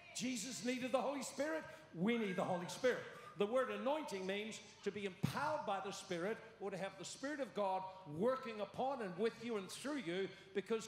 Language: English